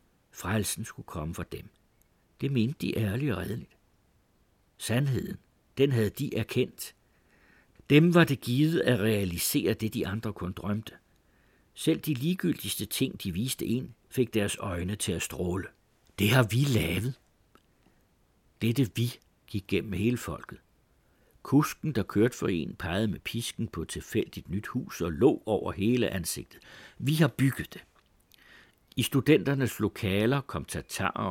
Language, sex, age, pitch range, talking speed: Danish, male, 60-79, 95-125 Hz, 150 wpm